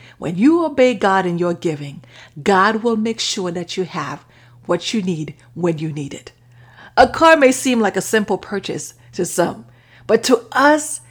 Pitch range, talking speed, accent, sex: 145-210 Hz, 185 wpm, American, female